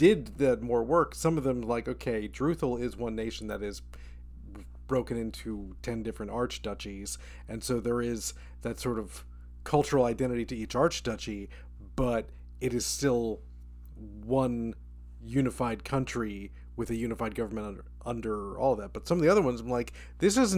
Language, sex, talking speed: English, male, 170 wpm